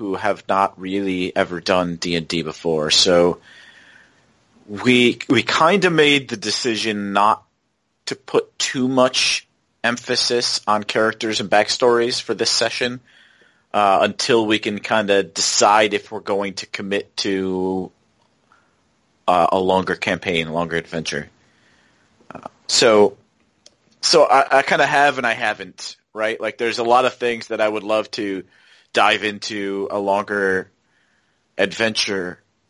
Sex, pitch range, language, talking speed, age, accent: male, 95-110 Hz, English, 145 wpm, 30-49, American